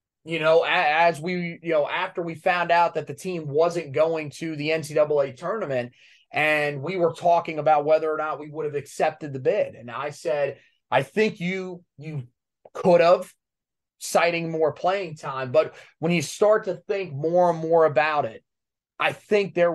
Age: 30-49